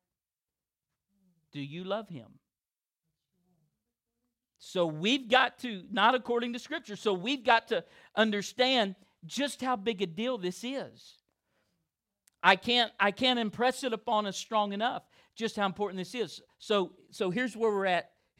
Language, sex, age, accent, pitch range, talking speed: English, male, 40-59, American, 135-205 Hz, 145 wpm